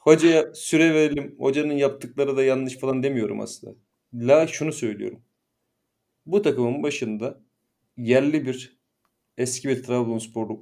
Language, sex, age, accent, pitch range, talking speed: Turkish, male, 40-59, native, 120-145 Hz, 120 wpm